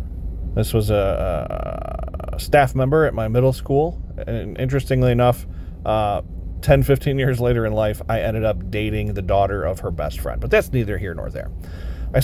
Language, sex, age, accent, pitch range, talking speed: English, male, 30-49, American, 85-135 Hz, 175 wpm